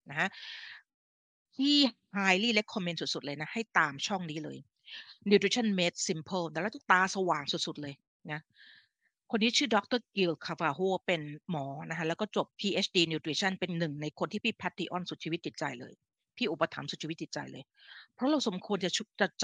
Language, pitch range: Thai, 170-225 Hz